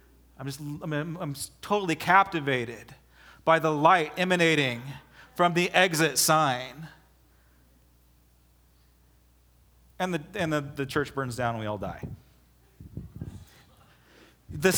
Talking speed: 110 wpm